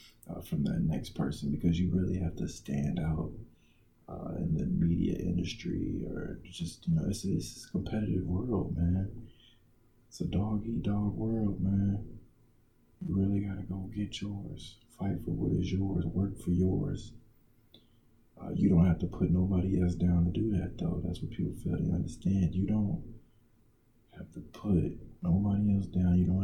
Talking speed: 170 wpm